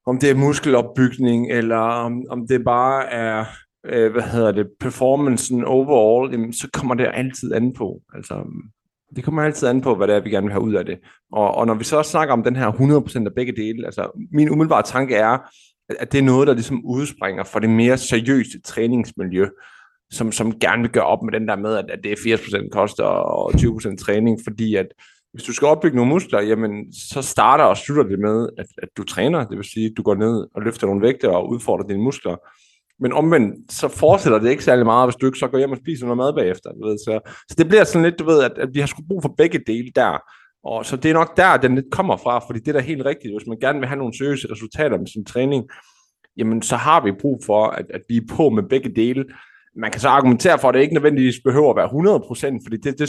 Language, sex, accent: Danish, male, native